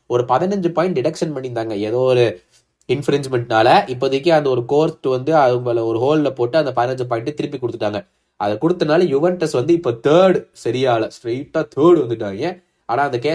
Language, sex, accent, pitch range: Tamil, male, native, 130-185 Hz